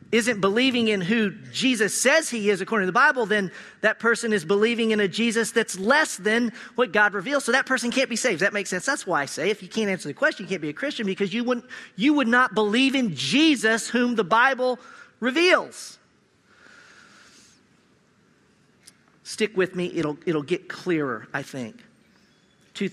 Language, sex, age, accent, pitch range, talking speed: English, male, 40-59, American, 175-235 Hz, 190 wpm